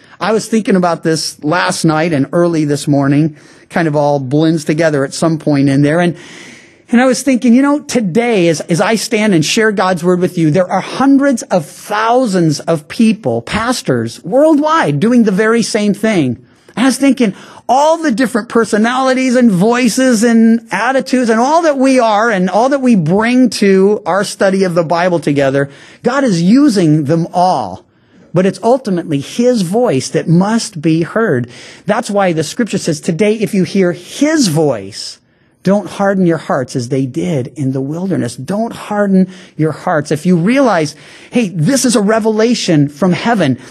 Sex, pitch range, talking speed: male, 155-225 Hz, 180 wpm